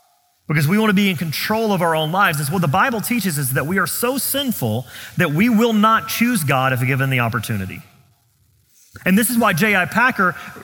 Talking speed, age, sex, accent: 215 wpm, 40-59, male, American